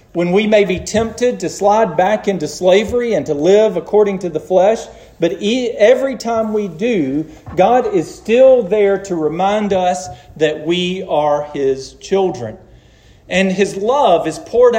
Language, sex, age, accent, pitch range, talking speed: English, male, 40-59, American, 155-215 Hz, 160 wpm